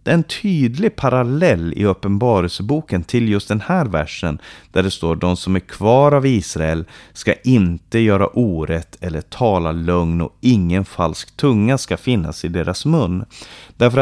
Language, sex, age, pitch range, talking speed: Swedish, male, 30-49, 85-120 Hz, 155 wpm